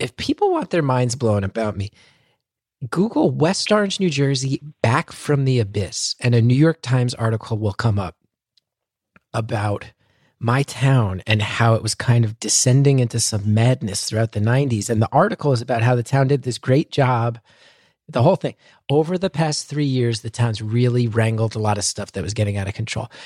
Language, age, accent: English, 30-49, American